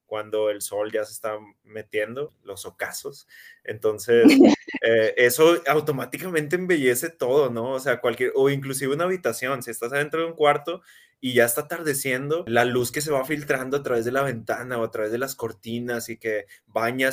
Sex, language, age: male, Spanish, 20-39